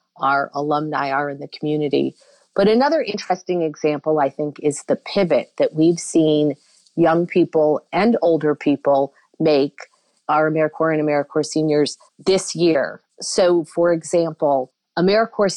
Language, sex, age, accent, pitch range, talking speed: English, female, 40-59, American, 145-165 Hz, 135 wpm